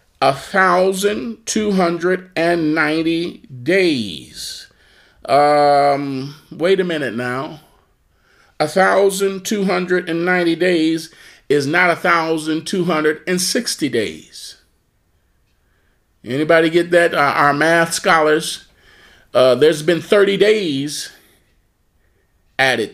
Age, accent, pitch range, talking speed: 40-59, American, 155-200 Hz, 105 wpm